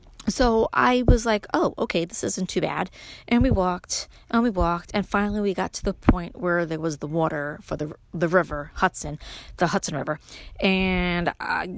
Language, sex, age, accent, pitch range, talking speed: English, female, 30-49, American, 165-210 Hz, 190 wpm